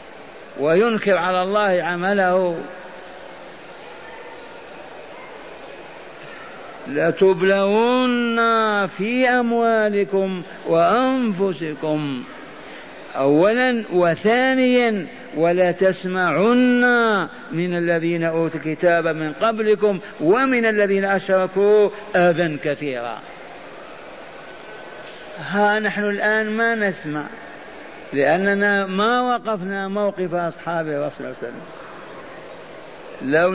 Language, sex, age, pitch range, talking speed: Arabic, male, 50-69, 170-210 Hz, 65 wpm